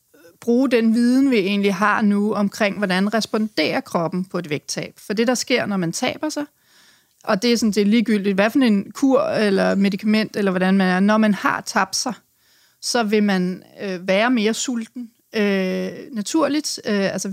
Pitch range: 195-230 Hz